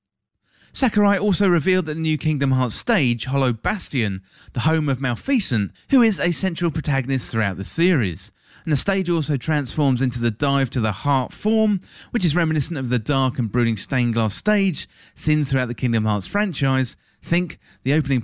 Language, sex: English, male